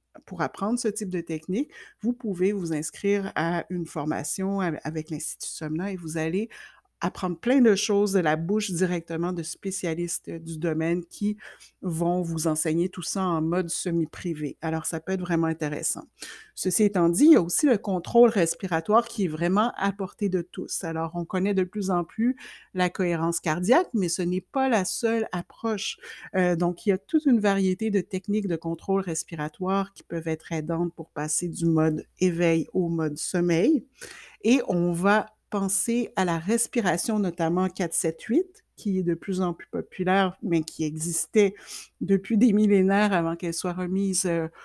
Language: French